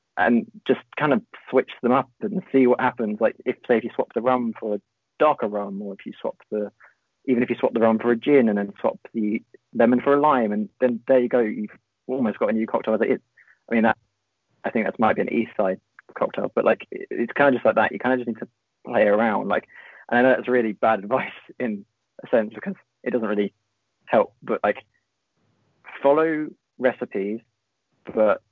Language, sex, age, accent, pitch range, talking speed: English, male, 30-49, British, 105-130 Hz, 220 wpm